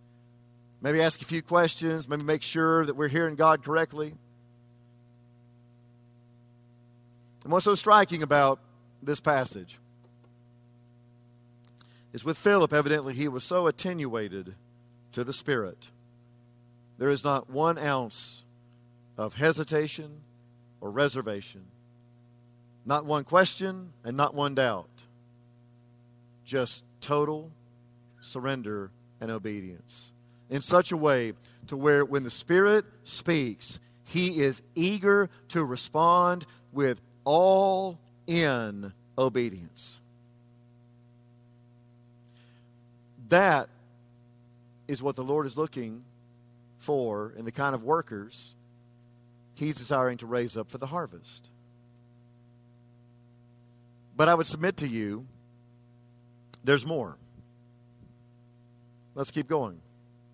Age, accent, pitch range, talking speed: 50-69, American, 120-145 Hz, 100 wpm